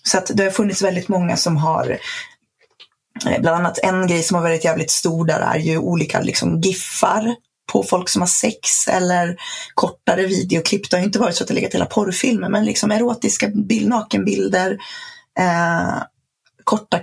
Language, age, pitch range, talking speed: Swedish, 30-49, 165-230 Hz, 175 wpm